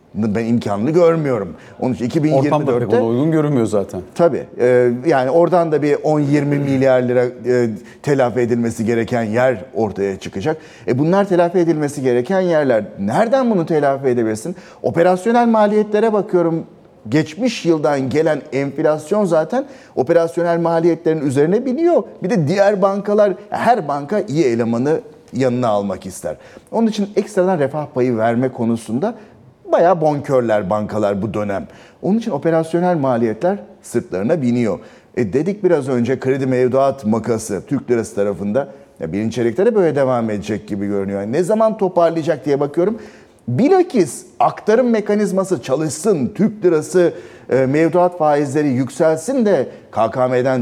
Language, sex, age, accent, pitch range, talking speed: Turkish, male, 40-59, native, 125-180 Hz, 125 wpm